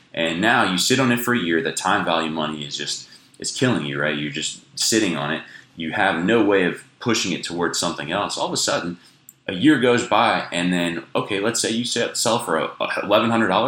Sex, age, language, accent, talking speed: male, 20-39, English, American, 225 wpm